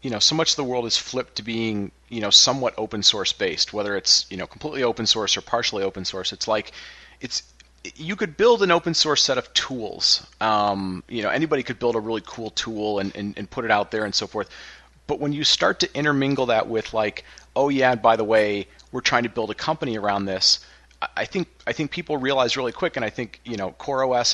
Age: 30-49